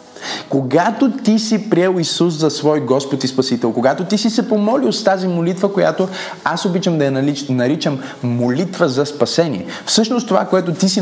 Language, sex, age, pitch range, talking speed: Bulgarian, male, 30-49, 145-210 Hz, 175 wpm